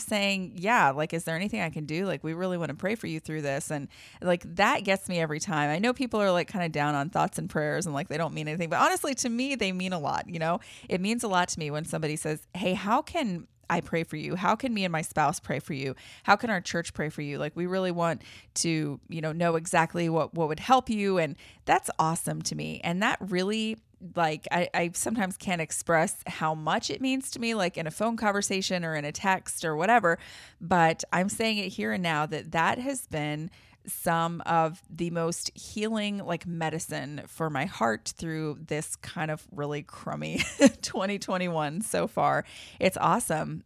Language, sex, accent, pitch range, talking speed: English, female, American, 155-195 Hz, 225 wpm